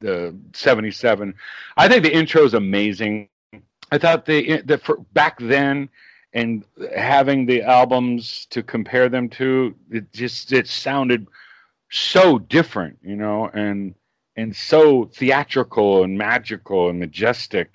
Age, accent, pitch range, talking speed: 40-59, American, 110-160 Hz, 130 wpm